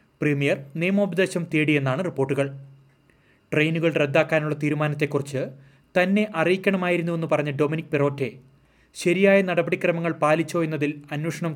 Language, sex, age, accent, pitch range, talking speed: Malayalam, male, 30-49, native, 140-165 Hz, 90 wpm